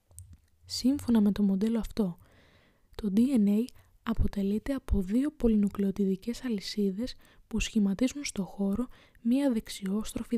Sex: female